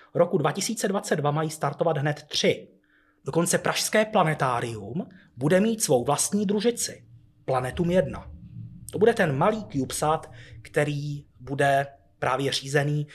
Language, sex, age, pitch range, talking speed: Czech, male, 30-49, 135-175 Hz, 115 wpm